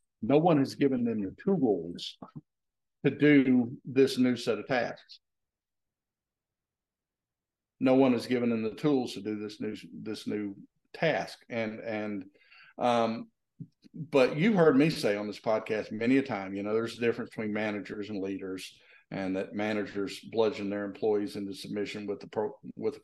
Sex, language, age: male, English, 50-69